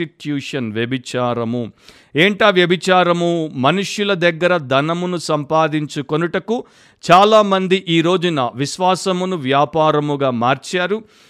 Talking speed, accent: 75 wpm, native